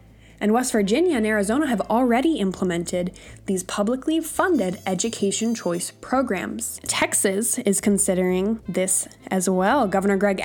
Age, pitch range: 10-29, 180-230 Hz